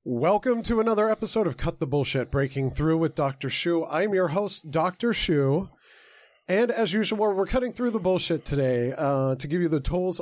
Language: English